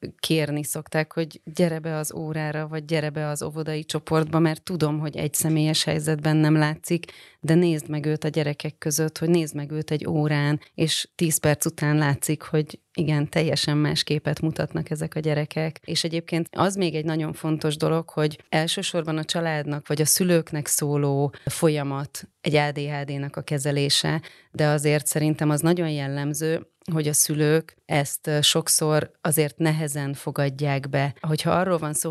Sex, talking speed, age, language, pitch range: female, 165 wpm, 30-49, Hungarian, 145-160 Hz